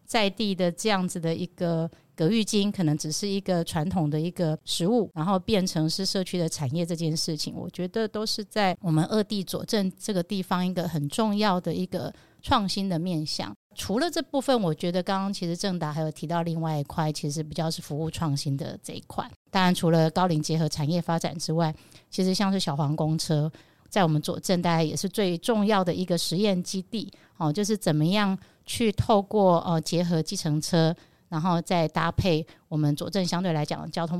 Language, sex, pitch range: Chinese, female, 160-190 Hz